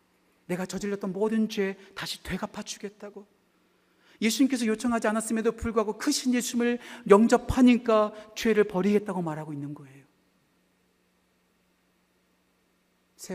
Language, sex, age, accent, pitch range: Korean, male, 40-59, native, 165-240 Hz